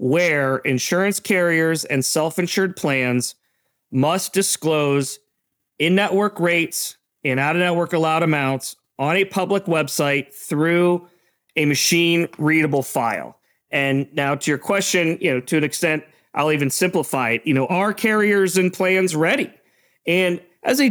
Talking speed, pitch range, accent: 130 wpm, 150-185 Hz, American